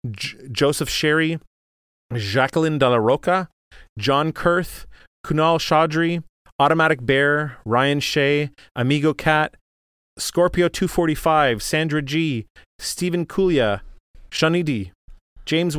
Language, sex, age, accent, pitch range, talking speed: English, male, 30-49, American, 105-165 Hz, 95 wpm